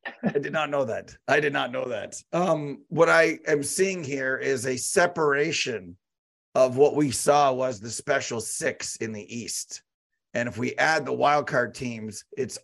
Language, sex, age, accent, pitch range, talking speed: English, male, 40-59, American, 130-170 Hz, 180 wpm